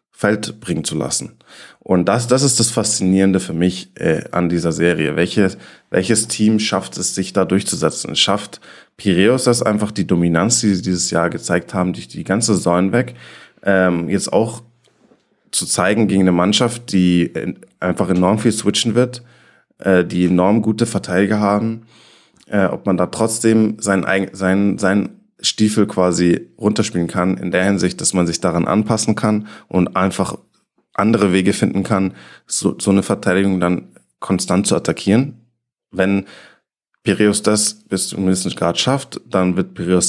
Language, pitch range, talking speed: German, 90-110 Hz, 165 wpm